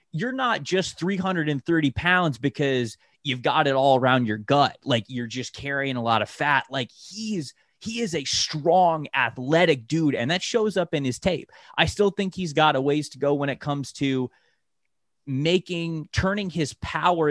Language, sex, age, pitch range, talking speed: Hungarian, male, 20-39, 120-160 Hz, 185 wpm